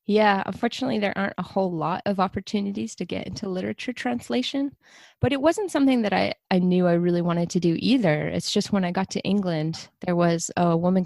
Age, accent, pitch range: 20-39, American, 170-200 Hz